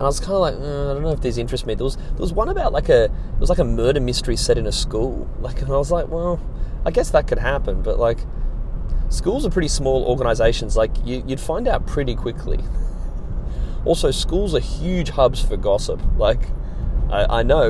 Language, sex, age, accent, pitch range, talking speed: English, male, 30-49, Australian, 110-150 Hz, 230 wpm